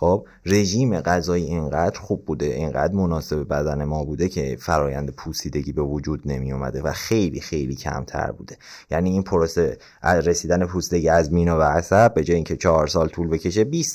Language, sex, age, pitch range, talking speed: Persian, male, 30-49, 80-105 Hz, 170 wpm